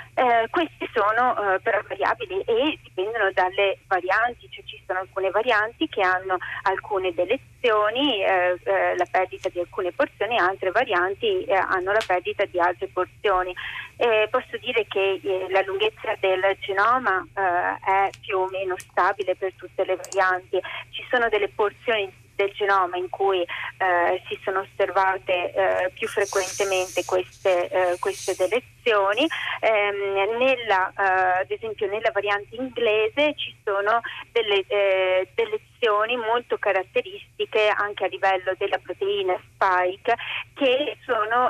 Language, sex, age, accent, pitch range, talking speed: Italian, female, 30-49, native, 185-220 Hz, 140 wpm